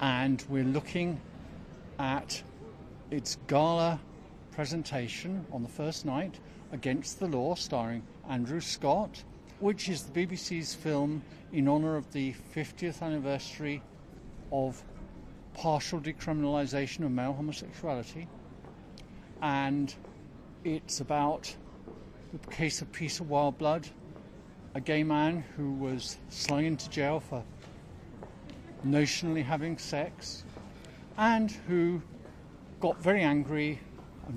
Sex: male